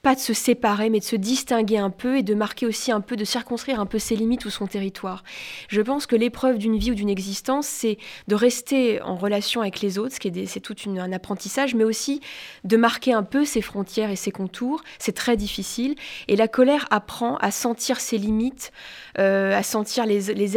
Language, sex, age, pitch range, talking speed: French, female, 20-39, 205-250 Hz, 230 wpm